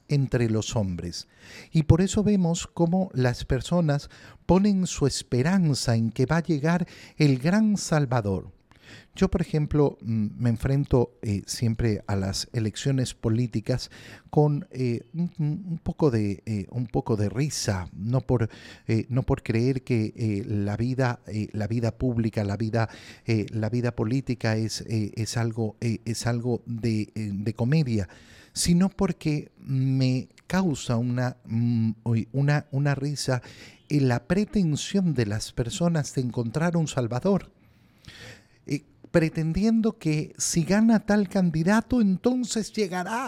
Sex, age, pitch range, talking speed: male, 50-69, 115-175 Hz, 140 wpm